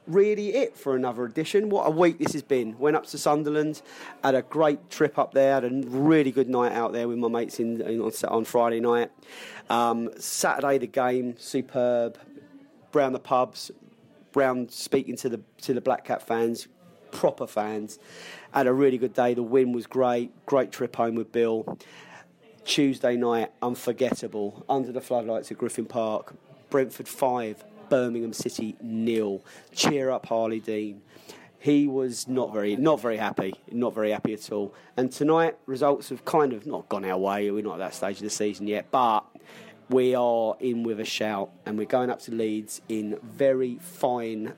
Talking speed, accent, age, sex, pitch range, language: 180 wpm, British, 30-49, male, 110-135 Hz, English